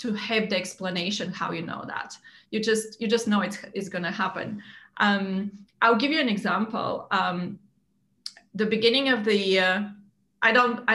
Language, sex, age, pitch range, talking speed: English, female, 30-49, 190-230 Hz, 175 wpm